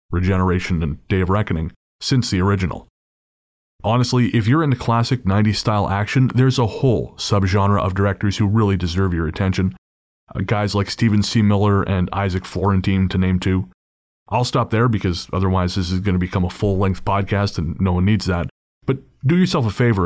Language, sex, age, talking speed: English, male, 30-49, 185 wpm